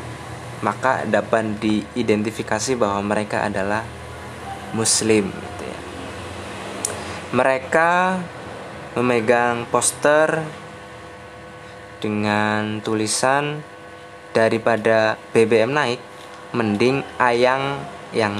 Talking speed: 65 wpm